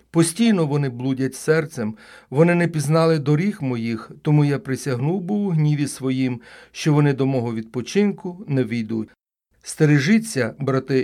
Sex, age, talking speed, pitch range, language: male, 40-59, 135 wpm, 125-165 Hz, Ukrainian